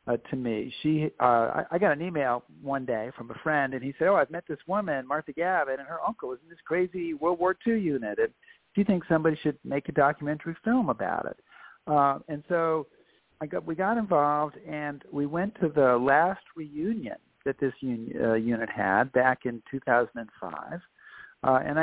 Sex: male